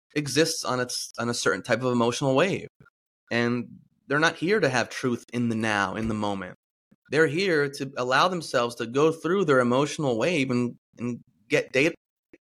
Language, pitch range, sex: English, 120-155 Hz, male